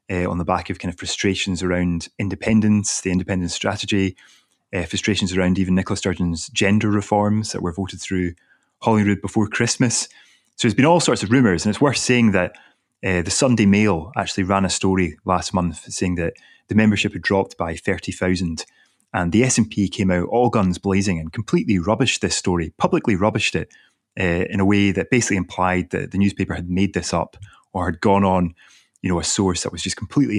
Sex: male